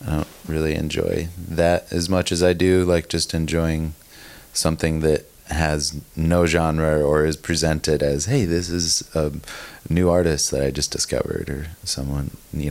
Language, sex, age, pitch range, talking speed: English, male, 20-39, 75-85 Hz, 165 wpm